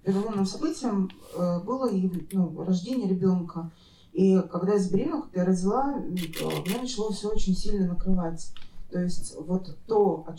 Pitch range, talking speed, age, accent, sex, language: 170-195 Hz, 140 wpm, 20-39, native, female, Russian